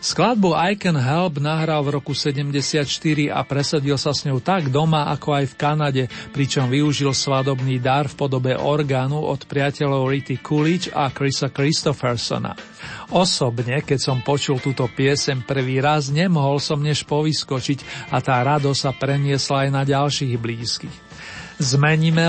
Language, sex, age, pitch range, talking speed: Slovak, male, 40-59, 135-150 Hz, 150 wpm